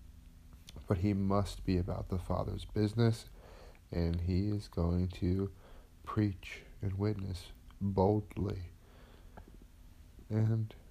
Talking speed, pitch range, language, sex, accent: 100 wpm, 85-100 Hz, English, male, American